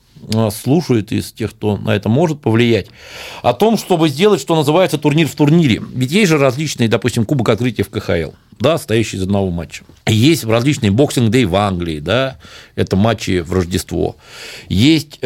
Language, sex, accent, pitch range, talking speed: Russian, male, native, 105-150 Hz, 170 wpm